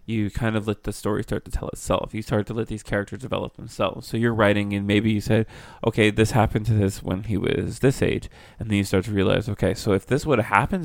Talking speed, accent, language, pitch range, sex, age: 265 wpm, American, English, 100-115 Hz, male, 20-39